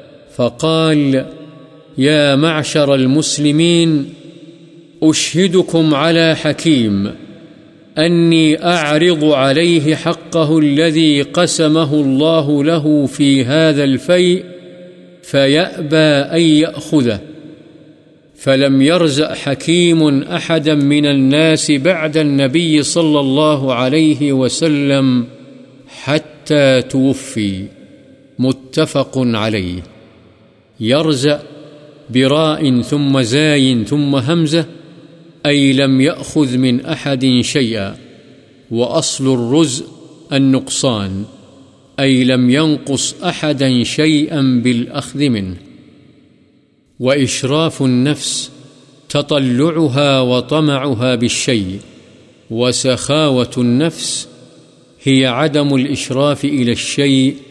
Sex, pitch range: male, 130-155 Hz